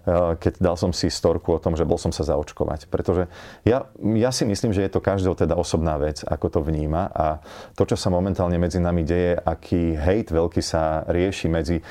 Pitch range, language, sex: 80-95 Hz, Slovak, male